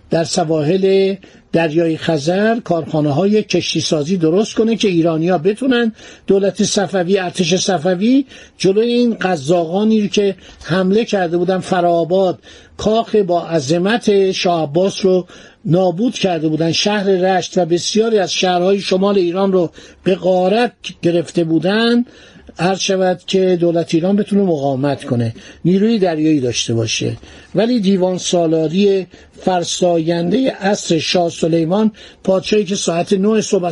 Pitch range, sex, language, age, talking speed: 170-210 Hz, male, Persian, 60-79, 125 wpm